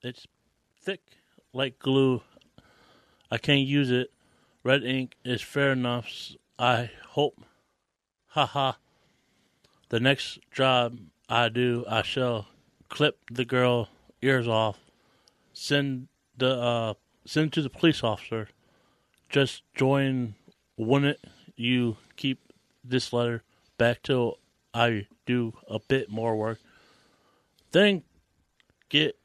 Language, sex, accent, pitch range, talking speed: English, male, American, 115-130 Hz, 115 wpm